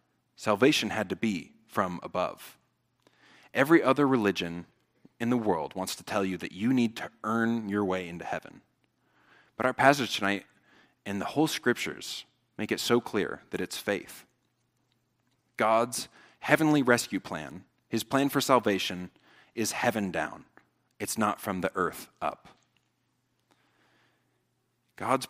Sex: male